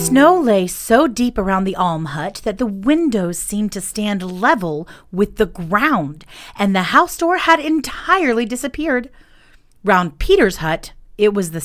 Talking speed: 160 wpm